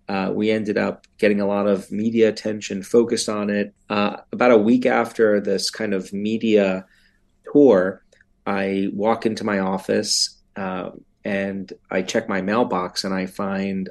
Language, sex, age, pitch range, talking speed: English, male, 30-49, 95-110 Hz, 160 wpm